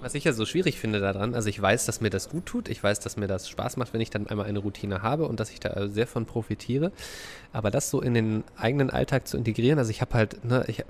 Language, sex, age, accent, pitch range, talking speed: German, male, 20-39, German, 110-130 Hz, 280 wpm